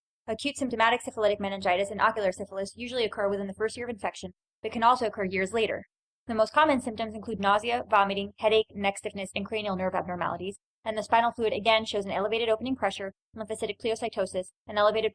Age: 20-39